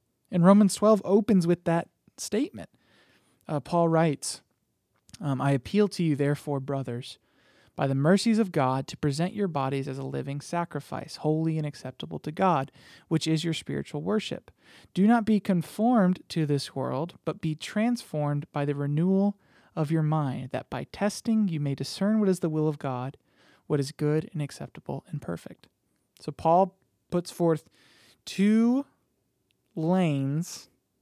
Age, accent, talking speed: 20-39, American, 155 wpm